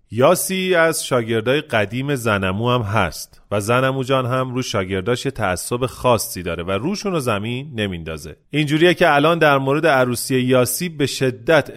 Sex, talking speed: male, 150 wpm